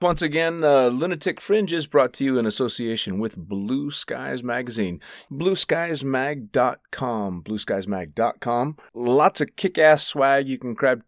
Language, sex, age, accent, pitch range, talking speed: English, male, 30-49, American, 105-140 Hz, 135 wpm